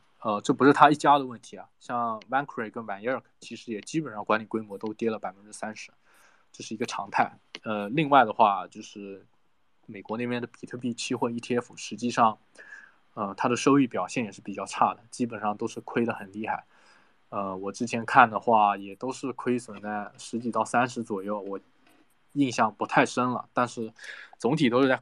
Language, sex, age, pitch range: Chinese, male, 20-39, 105-120 Hz